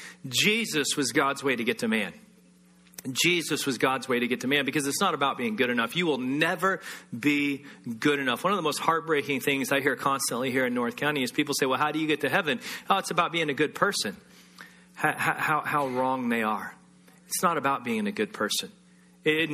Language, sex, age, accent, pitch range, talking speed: English, male, 40-59, American, 140-215 Hz, 225 wpm